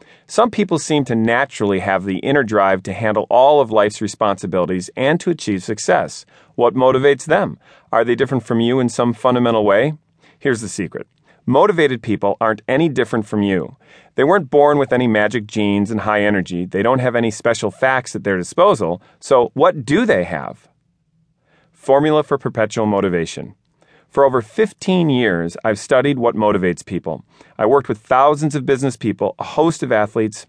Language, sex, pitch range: English, male, 105-145 Hz